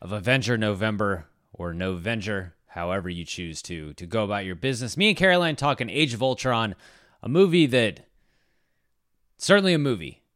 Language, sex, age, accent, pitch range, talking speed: English, male, 30-49, American, 105-150 Hz, 155 wpm